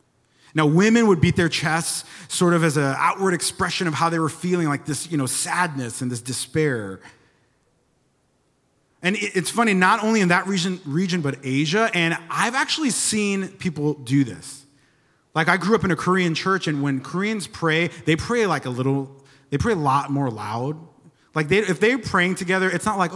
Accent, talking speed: American, 190 wpm